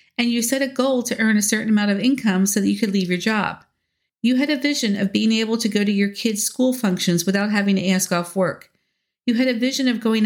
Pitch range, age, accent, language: 195-245 Hz, 50-69, American, English